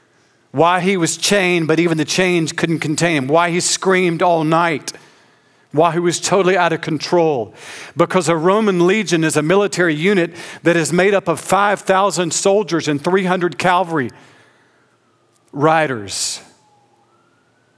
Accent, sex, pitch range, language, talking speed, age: American, male, 130-175 Hz, English, 140 wpm, 50-69